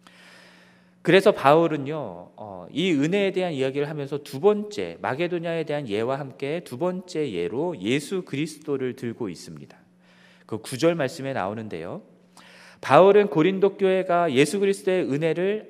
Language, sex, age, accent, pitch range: Korean, male, 40-59, native, 140-190 Hz